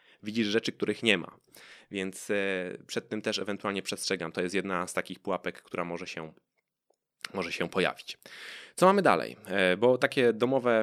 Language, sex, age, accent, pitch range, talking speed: Polish, male, 20-39, native, 100-140 Hz, 155 wpm